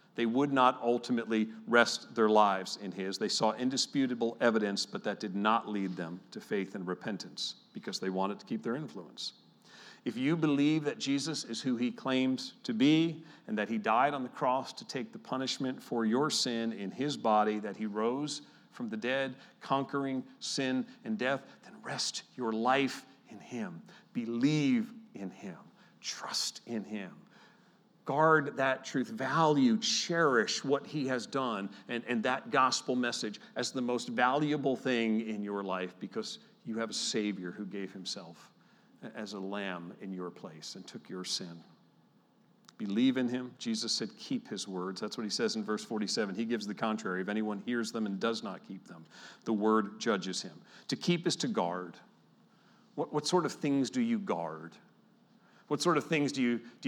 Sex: male